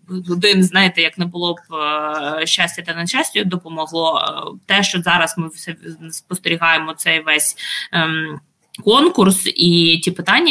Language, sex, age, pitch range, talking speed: Ukrainian, female, 20-39, 165-190 Hz, 120 wpm